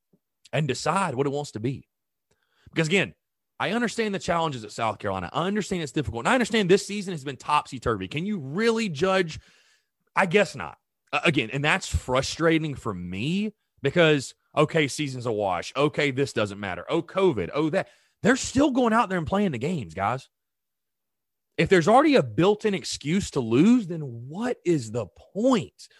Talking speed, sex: 180 wpm, male